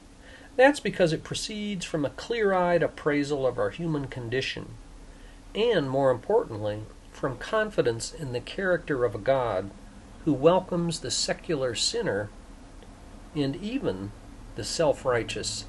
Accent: American